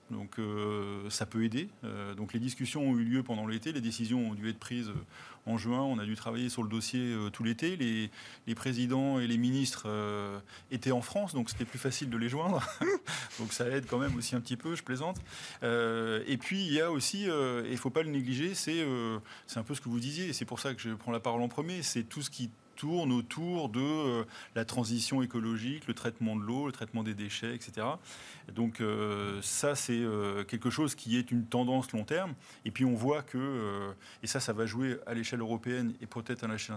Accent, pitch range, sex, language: French, 115-135 Hz, male, French